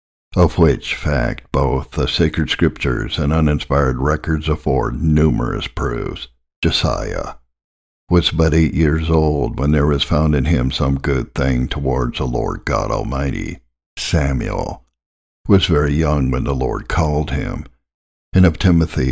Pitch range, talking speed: 65-80 Hz, 145 wpm